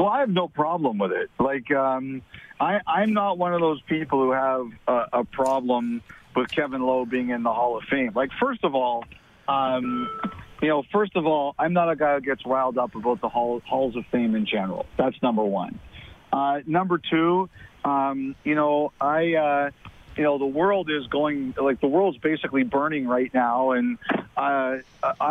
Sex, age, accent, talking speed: male, 50-69, American, 195 wpm